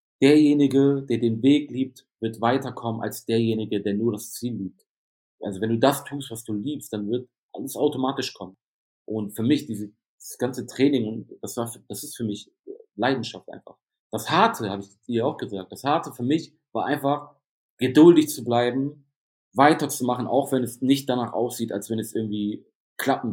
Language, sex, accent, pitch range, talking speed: German, male, German, 105-135 Hz, 175 wpm